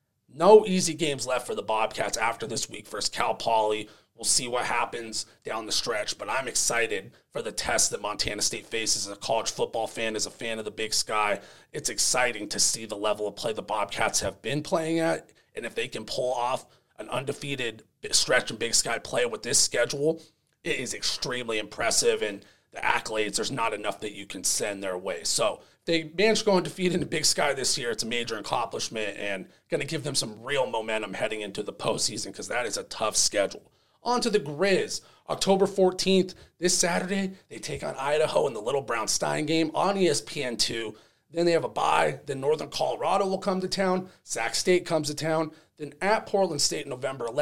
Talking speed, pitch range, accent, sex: 205 wpm, 115-185 Hz, American, male